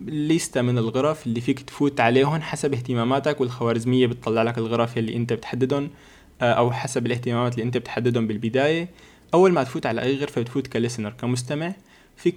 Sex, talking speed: male, 155 wpm